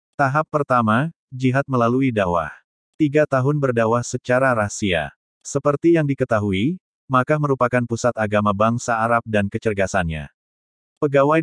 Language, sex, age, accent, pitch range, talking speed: Indonesian, male, 30-49, native, 110-135 Hz, 115 wpm